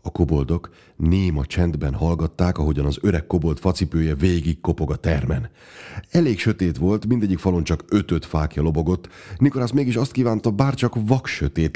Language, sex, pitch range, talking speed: Hungarian, male, 85-110 Hz, 160 wpm